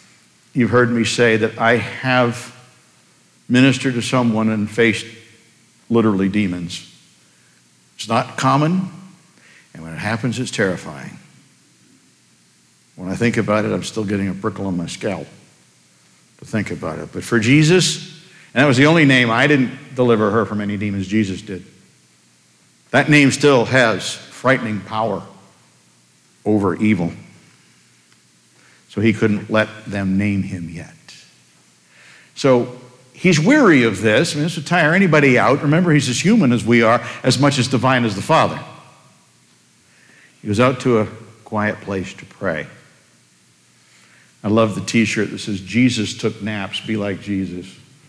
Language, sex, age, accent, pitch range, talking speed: English, male, 60-79, American, 95-135 Hz, 150 wpm